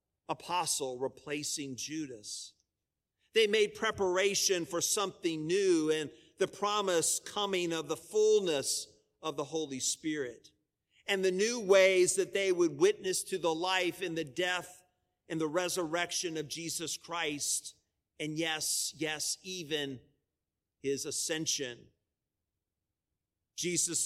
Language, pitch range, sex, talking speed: English, 140-180 Hz, male, 115 wpm